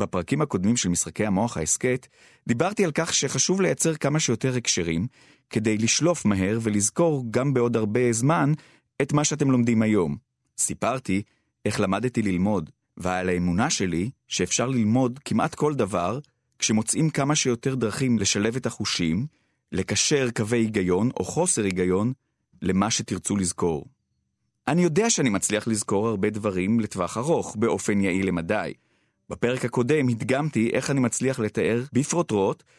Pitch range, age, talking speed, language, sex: 100-130 Hz, 30-49, 135 wpm, Hebrew, male